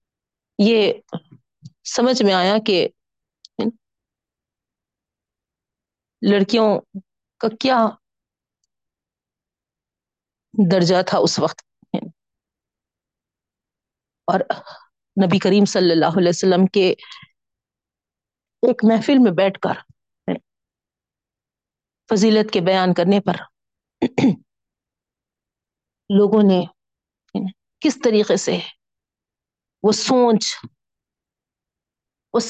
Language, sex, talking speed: Urdu, female, 70 wpm